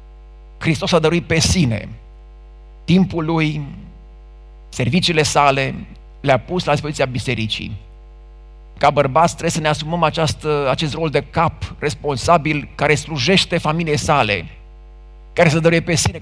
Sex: male